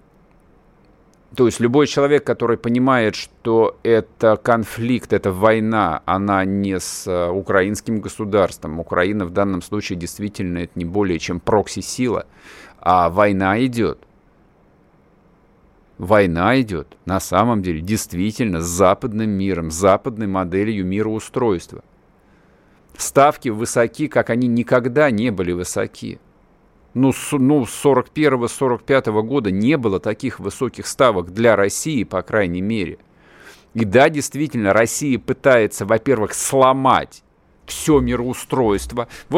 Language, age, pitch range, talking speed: Russian, 50-69, 100-145 Hz, 115 wpm